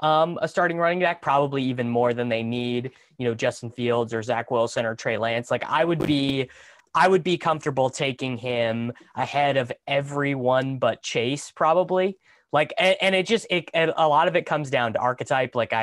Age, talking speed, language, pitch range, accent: 20-39, 195 wpm, English, 120-145 Hz, American